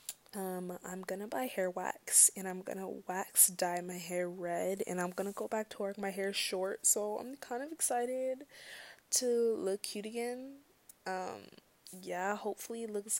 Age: 20-39